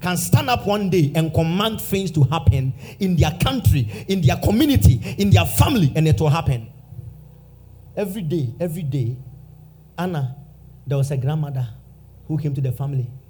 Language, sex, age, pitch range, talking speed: English, male, 40-59, 125-175 Hz, 165 wpm